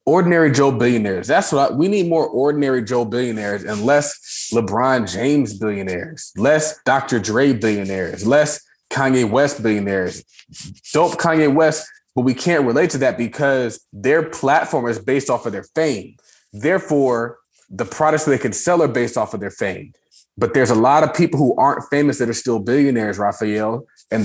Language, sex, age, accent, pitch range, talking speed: English, male, 20-39, American, 115-145 Hz, 175 wpm